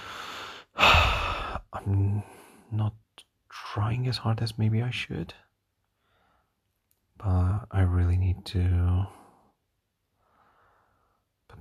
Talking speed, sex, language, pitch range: 80 wpm, male, English, 95-105 Hz